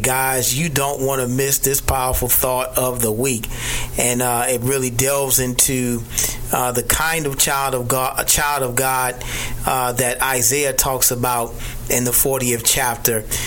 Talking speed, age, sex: 170 wpm, 30-49, male